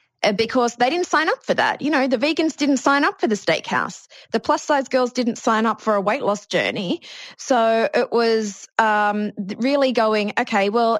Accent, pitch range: Australian, 190-230 Hz